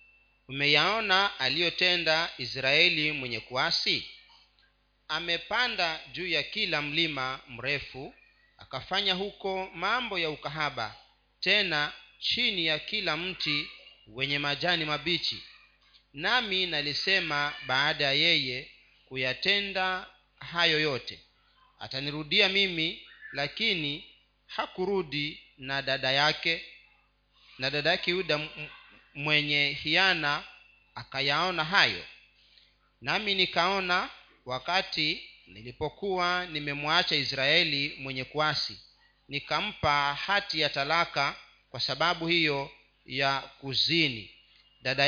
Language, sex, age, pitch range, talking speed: Swahili, male, 40-59, 140-180 Hz, 85 wpm